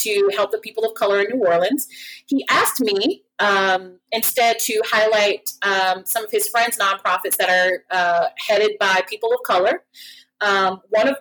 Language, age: English, 30-49